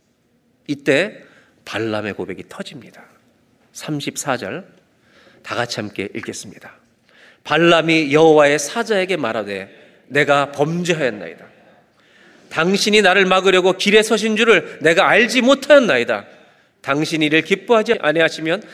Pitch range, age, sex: 140-225 Hz, 40-59, male